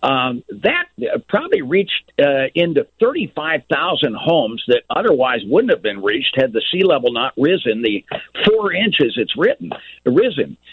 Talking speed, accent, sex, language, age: 145 wpm, American, male, English, 60-79